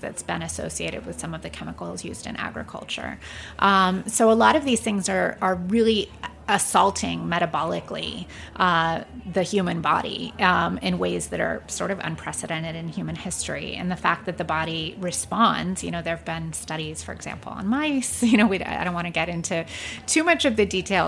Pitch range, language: 165-205 Hz, English